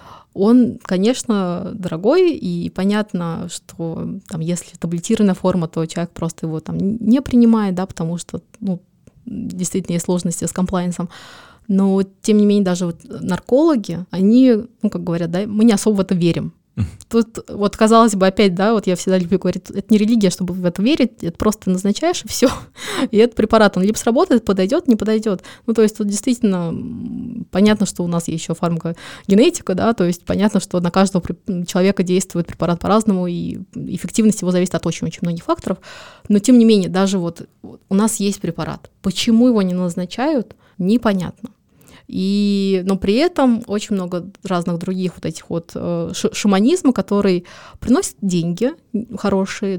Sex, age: female, 20-39